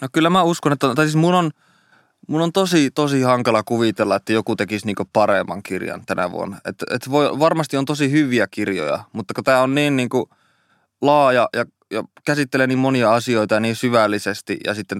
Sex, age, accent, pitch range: male, 20-39, native, 105-130 Hz